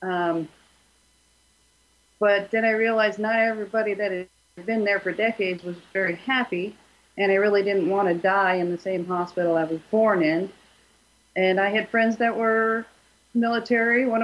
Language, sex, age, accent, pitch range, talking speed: English, female, 40-59, American, 185-215 Hz, 165 wpm